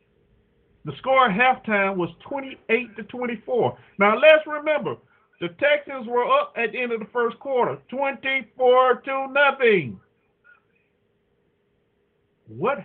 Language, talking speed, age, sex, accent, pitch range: English, 120 wpm, 50-69, male, American, 140-225 Hz